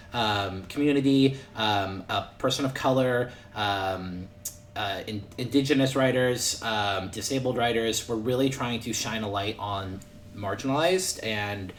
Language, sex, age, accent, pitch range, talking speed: English, male, 30-49, American, 100-130 Hz, 125 wpm